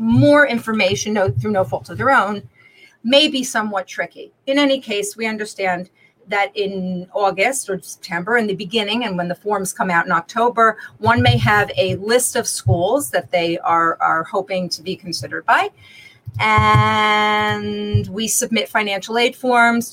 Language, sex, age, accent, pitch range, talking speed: English, female, 40-59, American, 180-235 Hz, 165 wpm